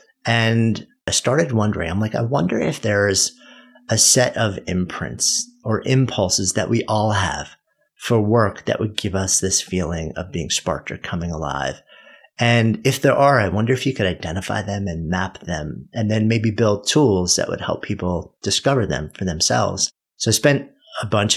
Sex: male